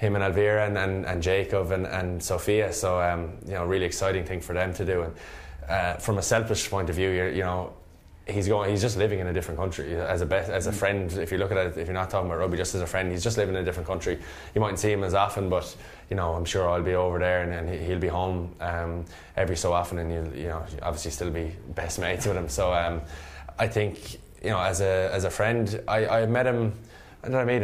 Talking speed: 270 wpm